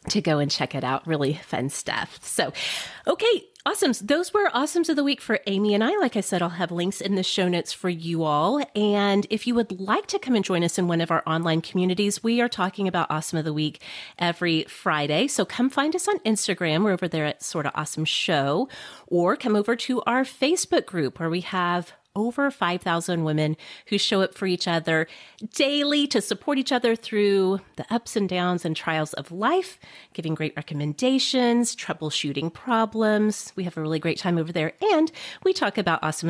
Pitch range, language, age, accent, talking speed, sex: 165-255 Hz, English, 30-49, American, 210 wpm, female